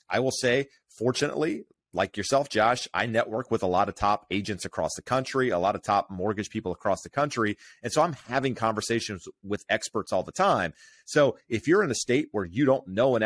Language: English